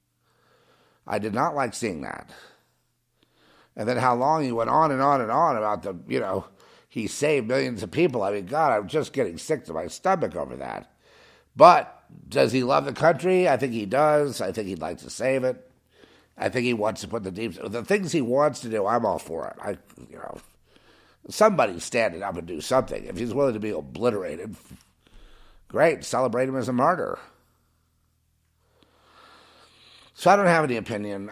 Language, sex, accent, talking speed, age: English, male, American, 190 wpm, 50-69